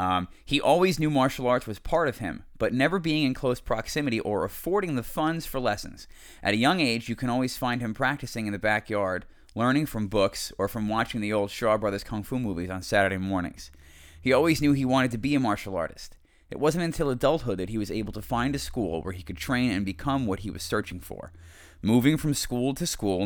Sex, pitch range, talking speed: male, 100-130 Hz, 230 wpm